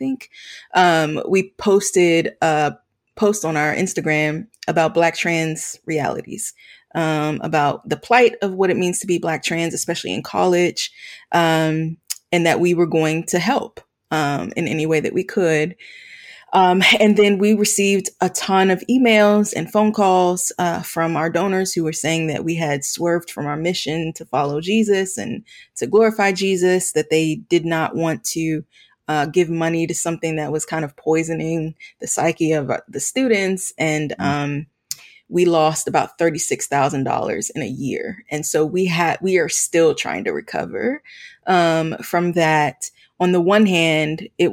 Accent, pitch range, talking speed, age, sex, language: American, 160-190 Hz, 165 wpm, 20-39, female, English